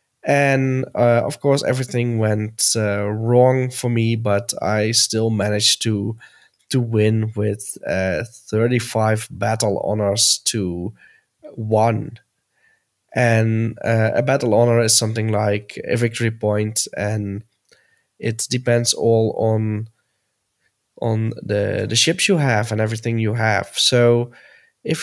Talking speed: 125 wpm